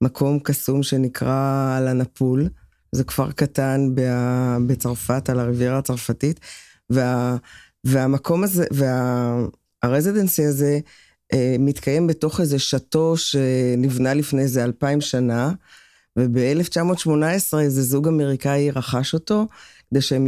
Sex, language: female, Hebrew